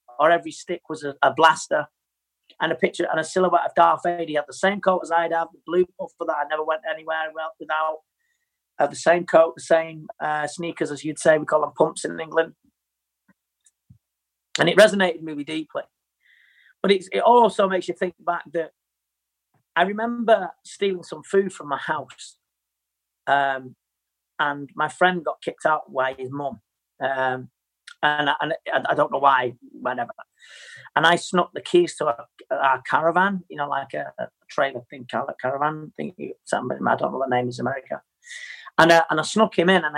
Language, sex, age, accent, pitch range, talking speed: English, male, 40-59, British, 140-180 Hz, 190 wpm